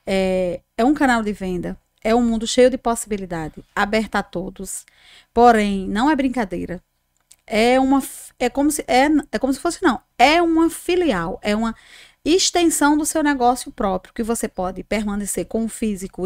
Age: 20-39